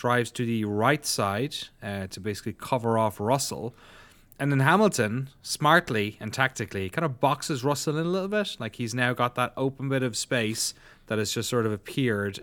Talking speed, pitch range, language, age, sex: 195 wpm, 105-125 Hz, English, 30-49, male